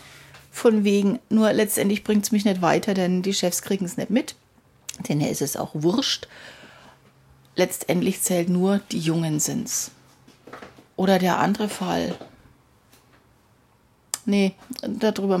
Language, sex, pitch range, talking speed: German, female, 175-210 Hz, 135 wpm